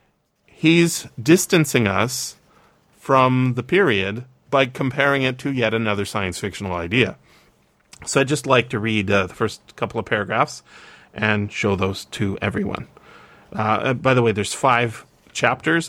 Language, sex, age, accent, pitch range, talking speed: English, male, 30-49, American, 105-130 Hz, 145 wpm